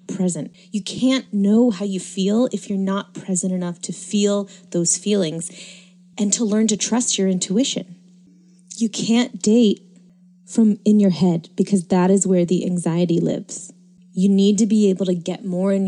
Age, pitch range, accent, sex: 30-49, 180-205 Hz, American, female